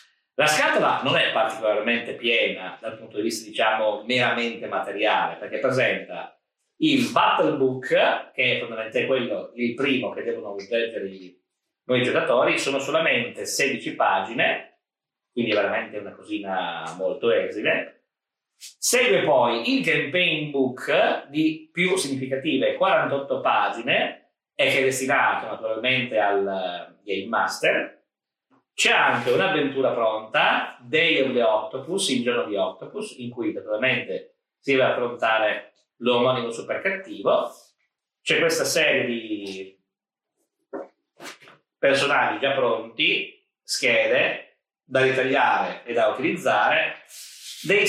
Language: Italian